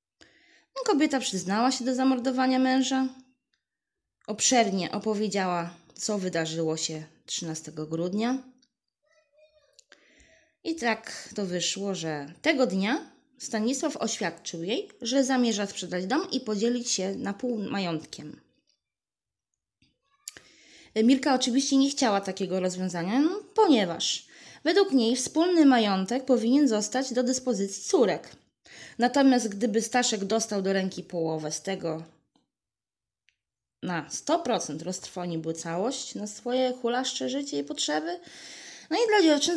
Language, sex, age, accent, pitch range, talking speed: Polish, female, 20-39, native, 195-280 Hz, 110 wpm